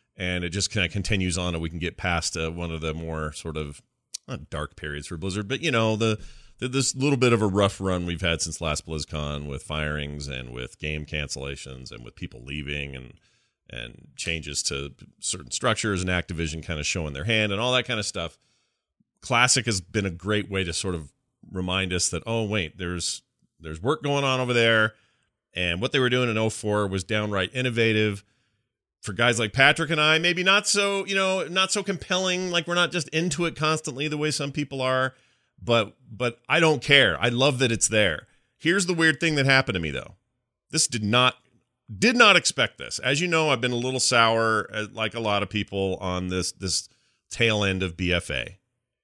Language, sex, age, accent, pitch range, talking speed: English, male, 30-49, American, 85-125 Hz, 210 wpm